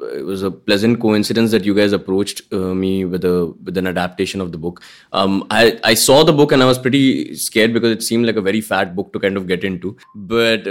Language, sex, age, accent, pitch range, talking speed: Hindi, male, 20-39, native, 100-120 Hz, 245 wpm